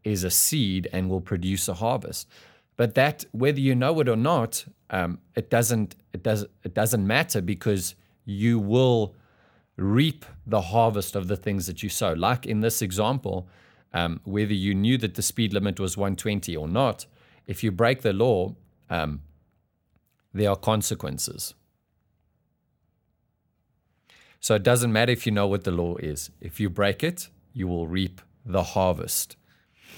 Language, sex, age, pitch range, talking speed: English, male, 30-49, 95-120 Hz, 160 wpm